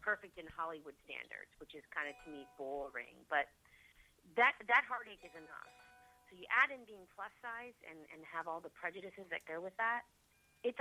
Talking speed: 195 wpm